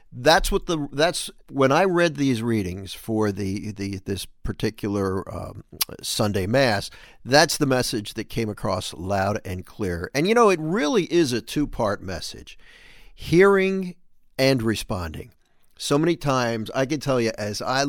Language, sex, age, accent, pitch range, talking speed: English, male, 50-69, American, 105-160 Hz, 160 wpm